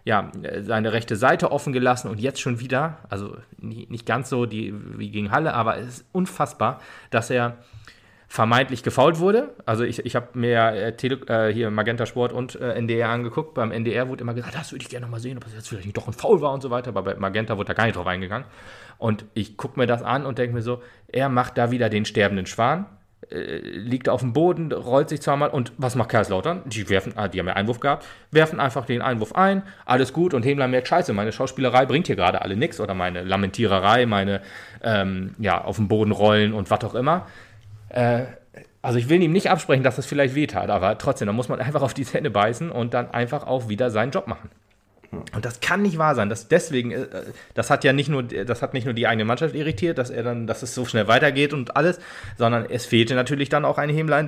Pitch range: 110-135 Hz